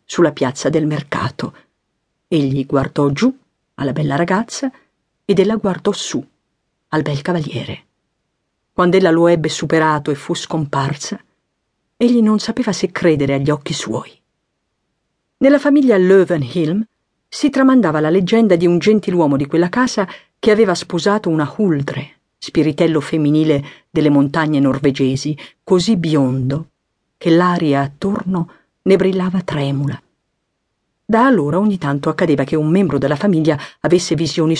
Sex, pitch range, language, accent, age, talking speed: female, 145-195 Hz, Italian, native, 50-69, 130 wpm